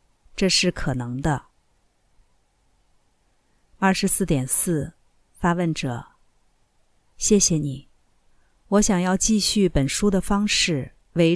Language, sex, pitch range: Chinese, female, 150-190 Hz